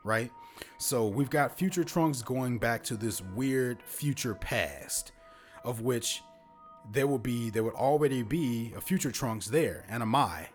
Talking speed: 165 wpm